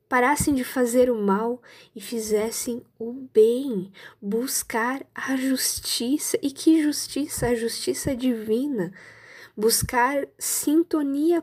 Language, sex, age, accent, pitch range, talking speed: Portuguese, female, 10-29, Brazilian, 230-295 Hz, 105 wpm